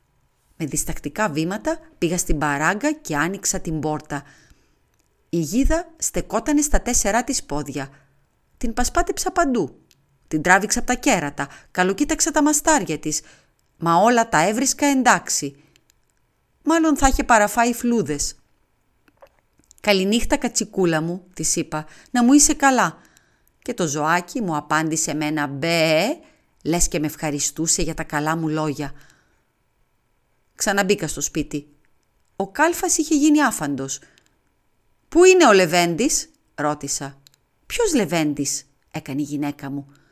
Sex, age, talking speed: female, 40-59, 125 wpm